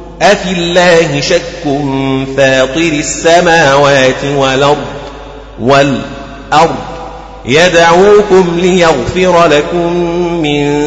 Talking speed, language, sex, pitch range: 55 wpm, Arabic, male, 135-175 Hz